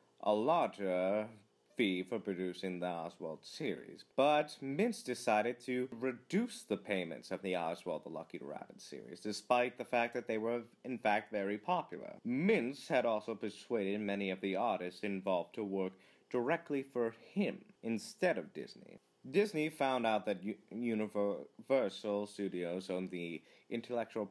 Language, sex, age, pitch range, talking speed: English, male, 30-49, 95-130 Hz, 145 wpm